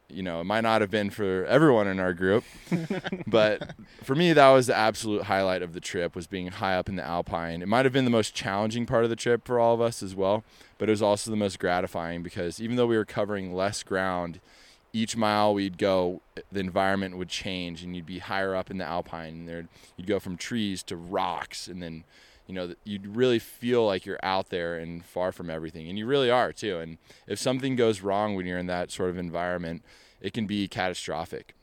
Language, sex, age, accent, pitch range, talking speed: English, male, 20-39, American, 90-105 Hz, 230 wpm